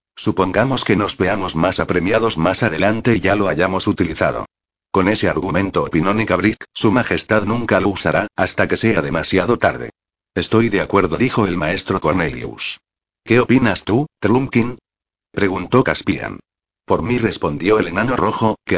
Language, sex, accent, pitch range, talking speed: Spanish, male, Spanish, 95-115 Hz, 155 wpm